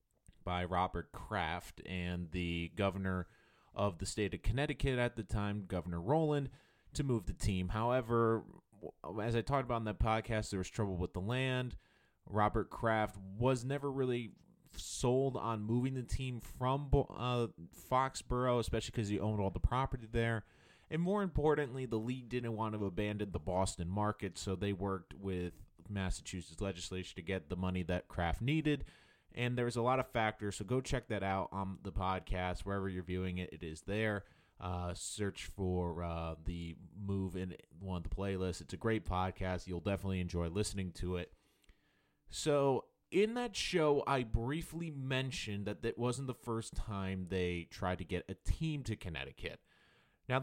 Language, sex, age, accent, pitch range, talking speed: English, male, 30-49, American, 95-125 Hz, 170 wpm